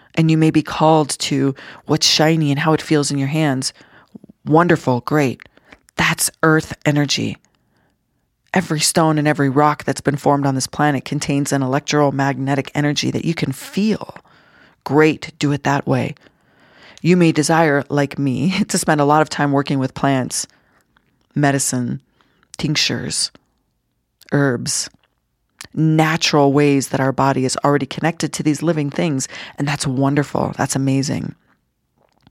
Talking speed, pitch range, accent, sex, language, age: 145 wpm, 140-160 Hz, American, female, English, 30-49